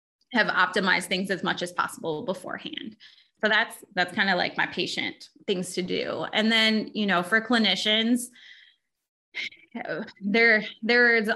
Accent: American